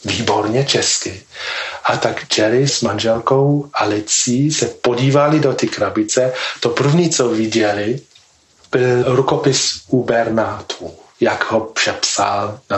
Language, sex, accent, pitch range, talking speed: Czech, male, native, 115-140 Hz, 115 wpm